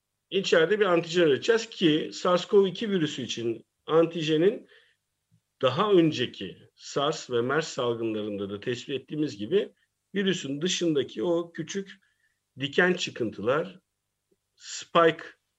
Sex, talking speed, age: male, 100 wpm, 50-69